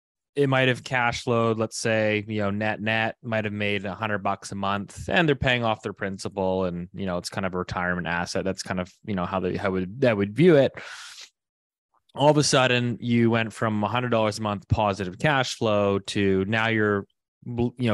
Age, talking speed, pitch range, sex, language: 20-39, 215 wpm, 100-115 Hz, male, English